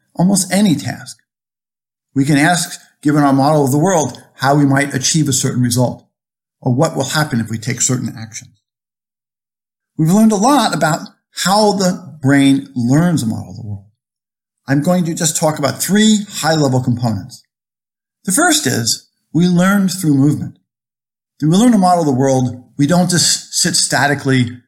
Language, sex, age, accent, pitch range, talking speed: English, male, 50-69, American, 130-170 Hz, 175 wpm